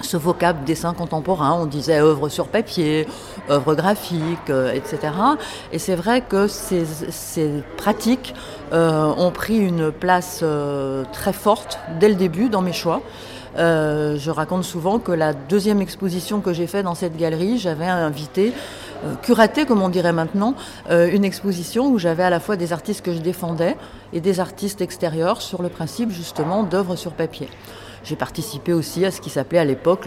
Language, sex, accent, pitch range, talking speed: French, female, French, 160-200 Hz, 175 wpm